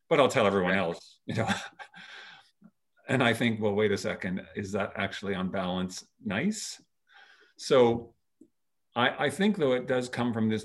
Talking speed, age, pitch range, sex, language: 170 wpm, 50-69, 100-120 Hz, male, English